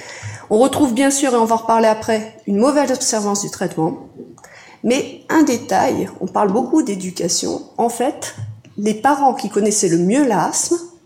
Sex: female